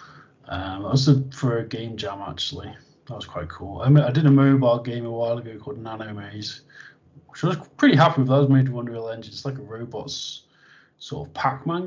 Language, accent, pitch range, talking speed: English, British, 115-145 Hz, 225 wpm